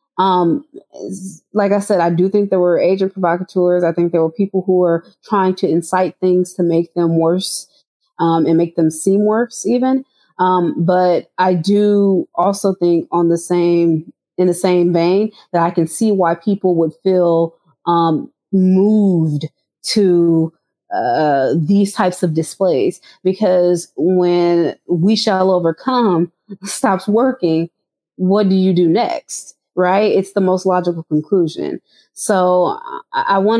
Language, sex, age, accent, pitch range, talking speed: English, female, 30-49, American, 170-195 Hz, 150 wpm